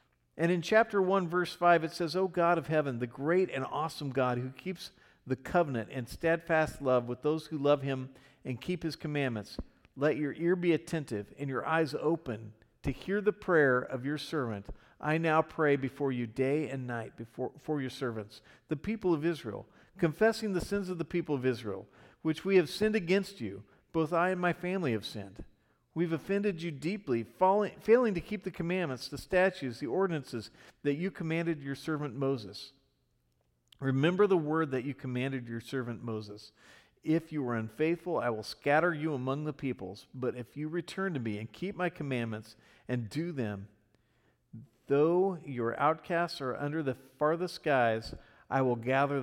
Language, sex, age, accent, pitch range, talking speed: English, male, 50-69, American, 120-170 Hz, 185 wpm